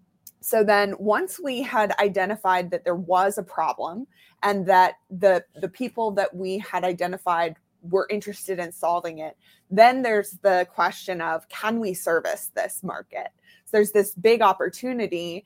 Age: 20-39